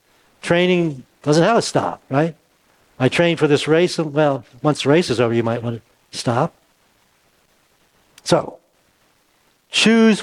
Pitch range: 140-175 Hz